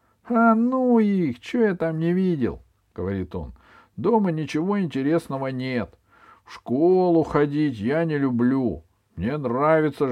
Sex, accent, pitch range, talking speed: male, native, 85-130 Hz, 130 wpm